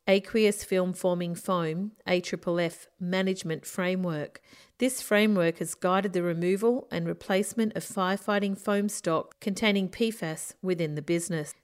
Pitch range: 175-210 Hz